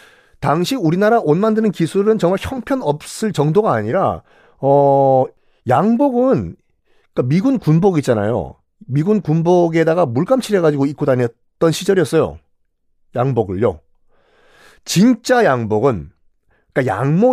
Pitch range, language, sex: 125-195 Hz, Korean, male